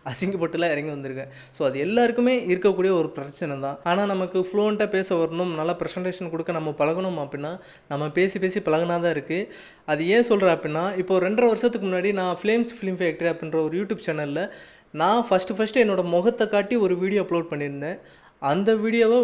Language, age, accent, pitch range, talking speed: Tamil, 20-39, native, 160-200 Hz, 170 wpm